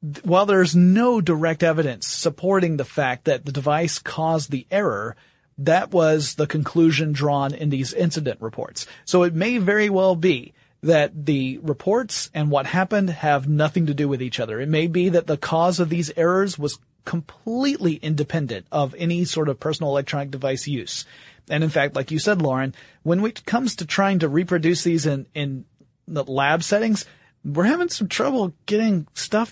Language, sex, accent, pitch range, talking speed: English, male, American, 140-180 Hz, 180 wpm